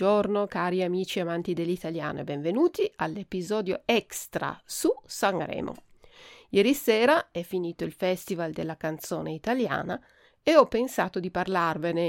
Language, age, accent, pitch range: Italian, 40-59, native, 175-235 Hz